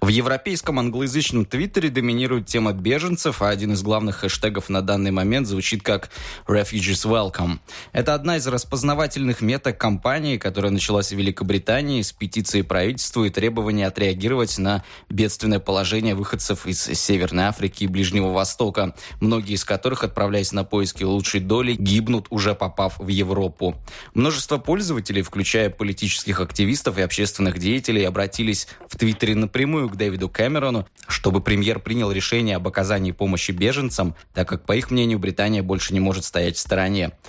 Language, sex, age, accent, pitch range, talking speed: Russian, male, 20-39, native, 95-120 Hz, 150 wpm